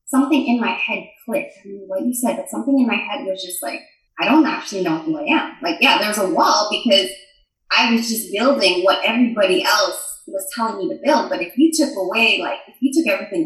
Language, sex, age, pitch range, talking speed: English, female, 20-39, 225-300 Hz, 235 wpm